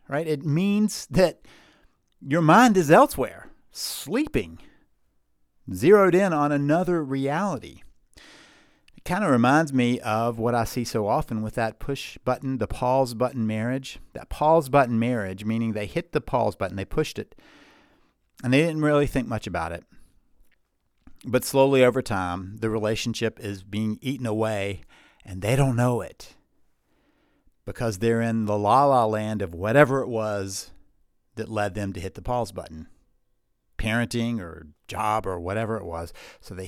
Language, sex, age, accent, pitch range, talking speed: English, male, 50-69, American, 100-135 Hz, 155 wpm